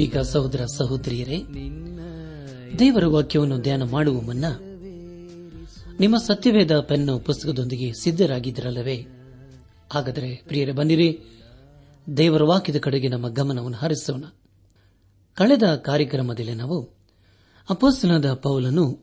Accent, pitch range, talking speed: native, 115-160 Hz, 85 wpm